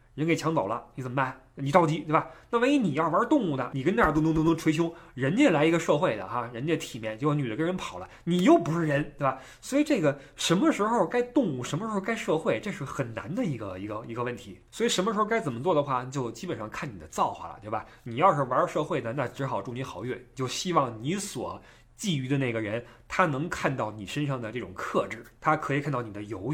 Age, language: 20-39, Chinese